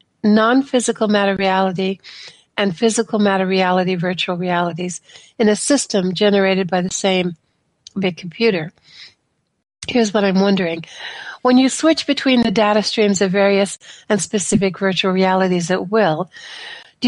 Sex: female